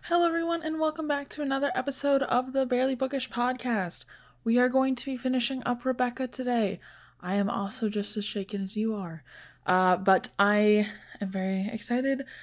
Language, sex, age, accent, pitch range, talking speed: English, female, 10-29, American, 180-225 Hz, 180 wpm